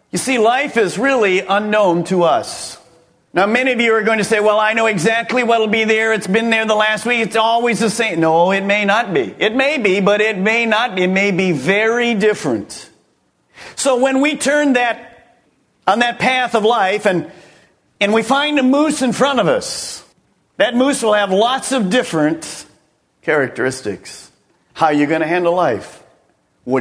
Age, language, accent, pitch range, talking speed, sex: 50-69, English, American, 170-235 Hz, 195 wpm, male